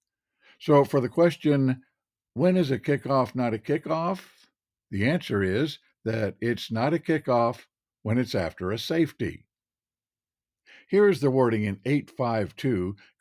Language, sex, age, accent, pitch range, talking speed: English, male, 60-79, American, 110-140 Hz, 135 wpm